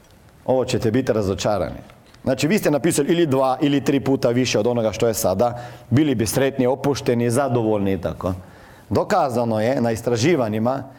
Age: 40-59